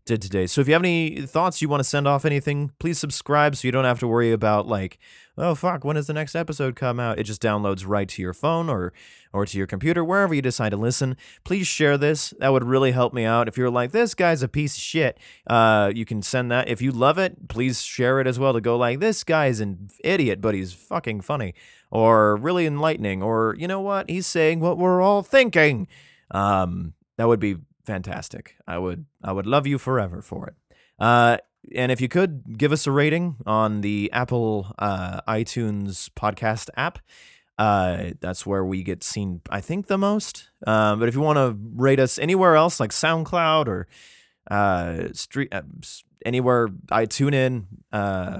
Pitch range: 105-150 Hz